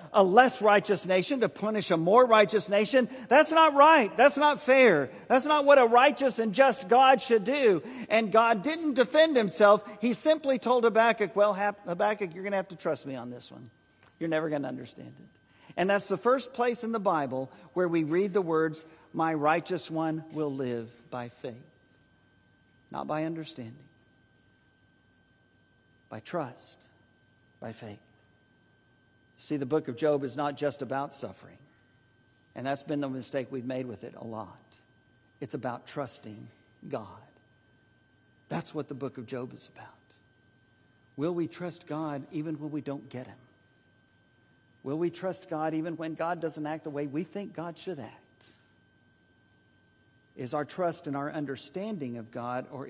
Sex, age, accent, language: male, 50-69, American, English